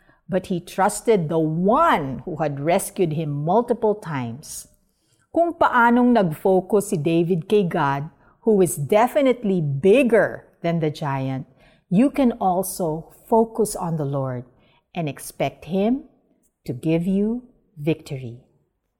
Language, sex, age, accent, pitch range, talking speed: Filipino, female, 50-69, native, 150-230 Hz, 125 wpm